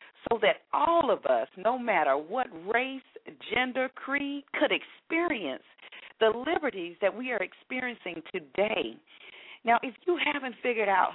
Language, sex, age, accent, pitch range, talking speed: English, female, 50-69, American, 170-255 Hz, 140 wpm